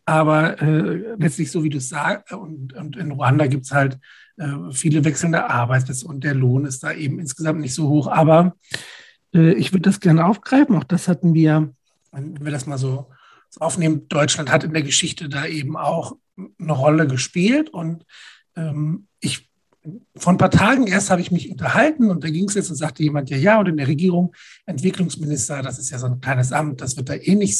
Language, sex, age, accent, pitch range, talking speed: German, male, 60-79, German, 145-180 Hz, 210 wpm